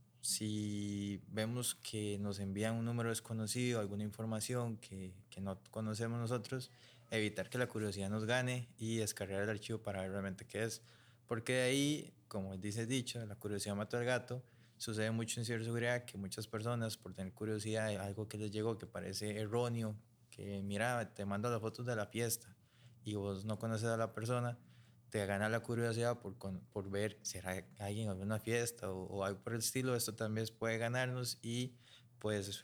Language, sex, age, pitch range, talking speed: Spanish, male, 20-39, 105-120 Hz, 180 wpm